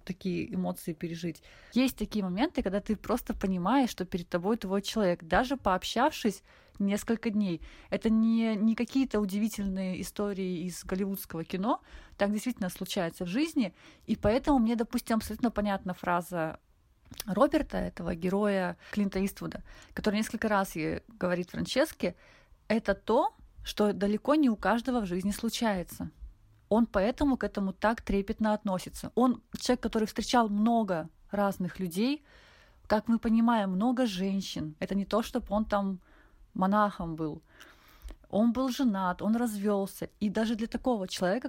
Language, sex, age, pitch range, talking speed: Russian, female, 30-49, 190-235 Hz, 140 wpm